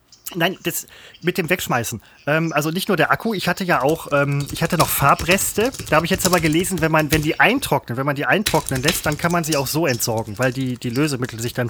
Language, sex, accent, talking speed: German, male, German, 250 wpm